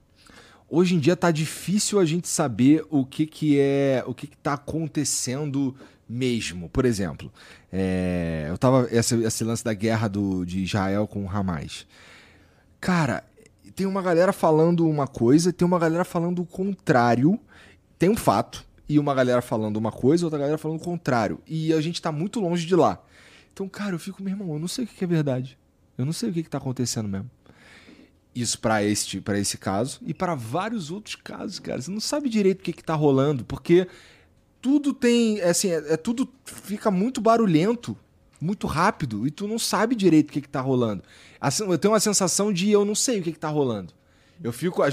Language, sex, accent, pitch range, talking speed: Portuguese, male, Brazilian, 120-185 Hz, 200 wpm